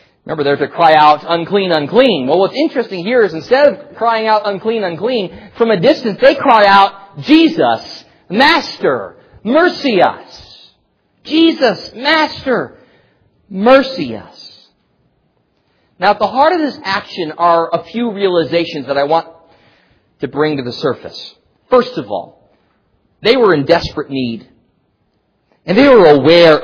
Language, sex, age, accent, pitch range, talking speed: English, male, 40-59, American, 155-235 Hz, 140 wpm